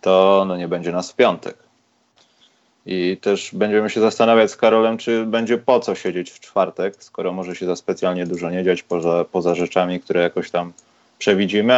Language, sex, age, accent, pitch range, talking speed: Polish, male, 30-49, native, 95-115 Hz, 185 wpm